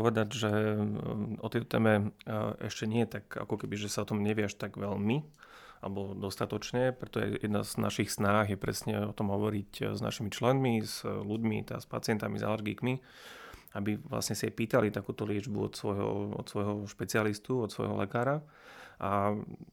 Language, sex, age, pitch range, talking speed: Slovak, male, 30-49, 100-110 Hz, 170 wpm